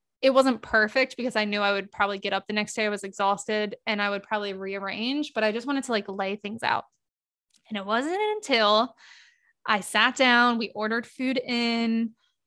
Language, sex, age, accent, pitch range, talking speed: English, female, 20-39, American, 210-260 Hz, 200 wpm